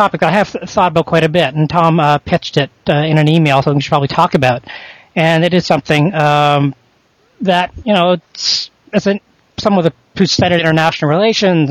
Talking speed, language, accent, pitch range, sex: 200 wpm, English, American, 145-180 Hz, male